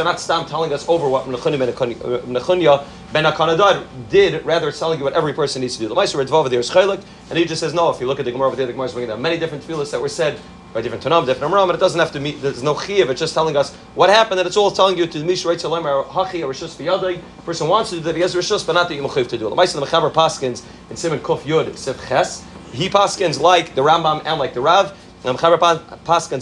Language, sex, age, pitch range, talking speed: English, male, 30-49, 140-180 Hz, 245 wpm